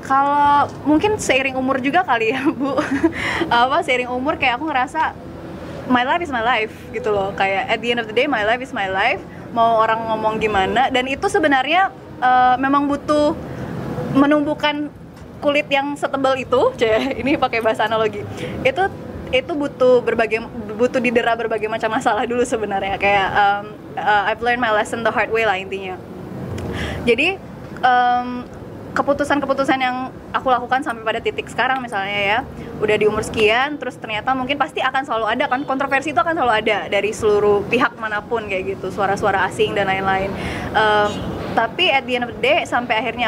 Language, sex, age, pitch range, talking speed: Malay, female, 20-39, 215-270 Hz, 175 wpm